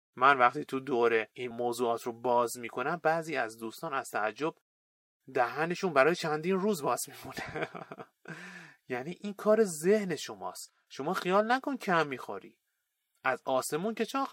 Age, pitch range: 30-49, 125-185 Hz